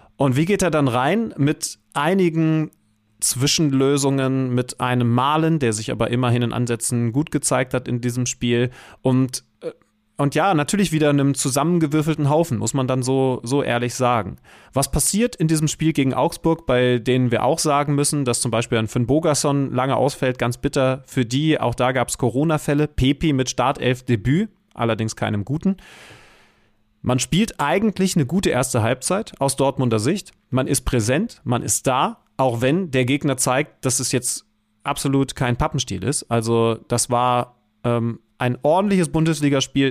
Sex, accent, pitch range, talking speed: male, German, 120-150 Hz, 165 wpm